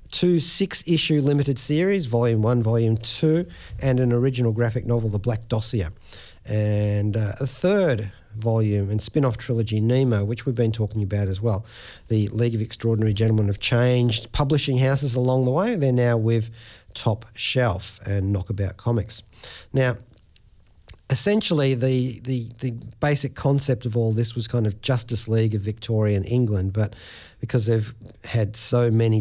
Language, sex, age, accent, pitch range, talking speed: English, male, 40-59, Australian, 110-135 Hz, 155 wpm